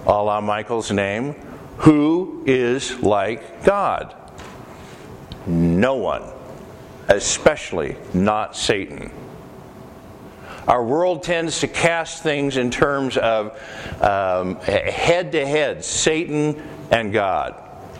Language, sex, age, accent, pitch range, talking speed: English, male, 60-79, American, 115-155 Hz, 90 wpm